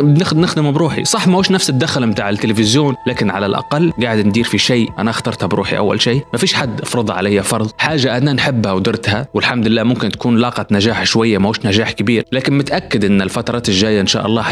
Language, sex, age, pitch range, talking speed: Arabic, male, 20-39, 110-140 Hz, 200 wpm